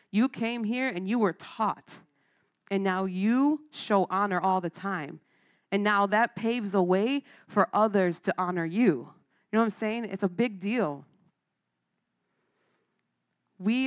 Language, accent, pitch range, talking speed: English, American, 180-200 Hz, 155 wpm